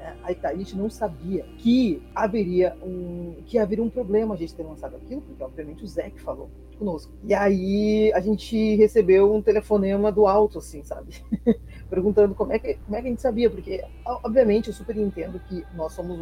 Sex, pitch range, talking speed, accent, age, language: female, 175-215 Hz, 190 wpm, Brazilian, 20-39, Portuguese